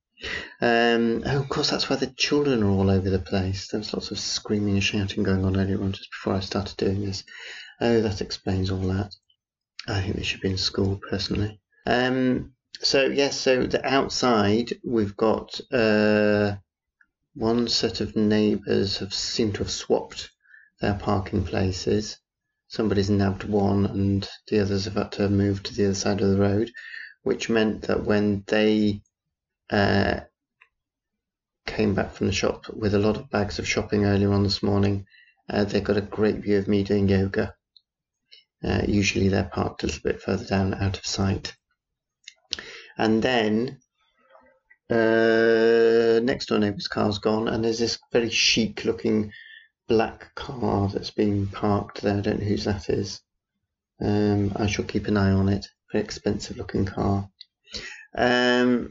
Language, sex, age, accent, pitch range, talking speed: English, male, 30-49, British, 100-110 Hz, 165 wpm